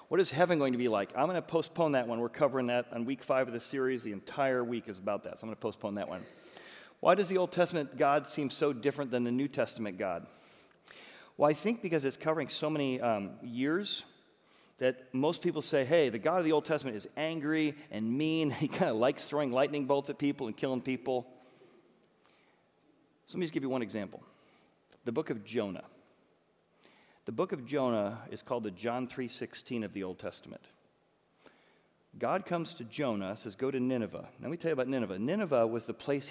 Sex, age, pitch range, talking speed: male, 40-59, 120-150 Hz, 215 wpm